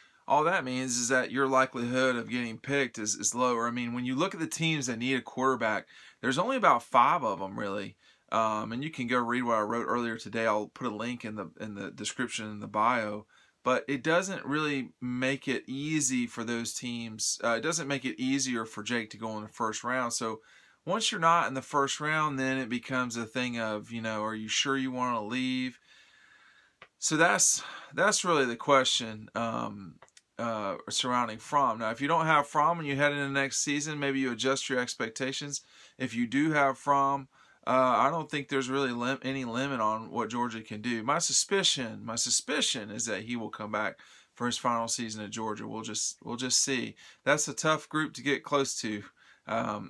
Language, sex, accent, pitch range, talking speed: English, male, American, 115-135 Hz, 215 wpm